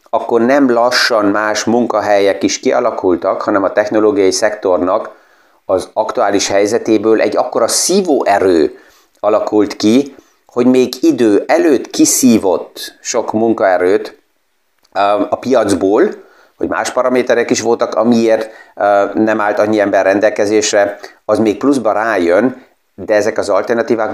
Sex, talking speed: male, 115 wpm